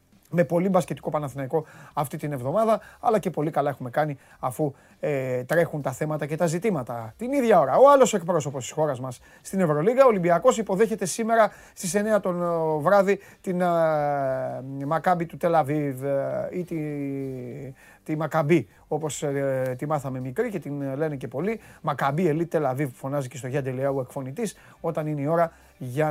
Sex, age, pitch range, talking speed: male, 30-49, 140-185 Hz, 165 wpm